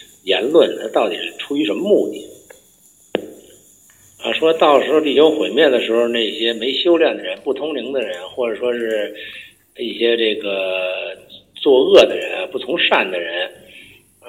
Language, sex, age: Chinese, male, 50-69